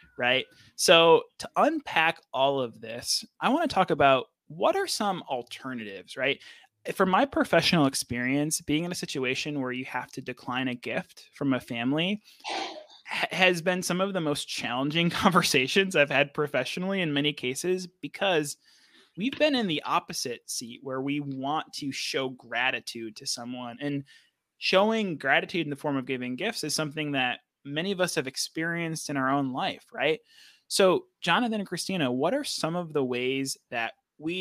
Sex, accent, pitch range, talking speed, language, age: male, American, 135-185 Hz, 170 wpm, English, 20-39